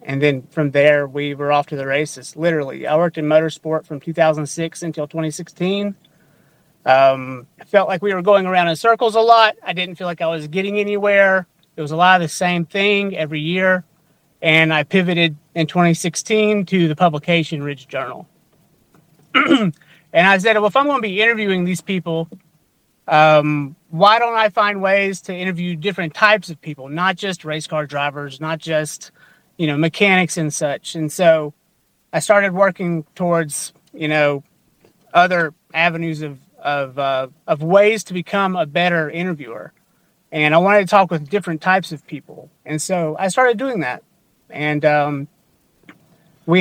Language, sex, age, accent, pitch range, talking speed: English, male, 30-49, American, 155-190 Hz, 170 wpm